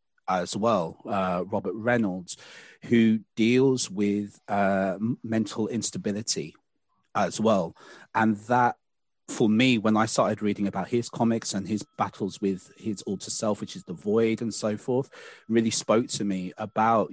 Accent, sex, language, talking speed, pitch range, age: British, male, English, 150 wpm, 100-115 Hz, 30-49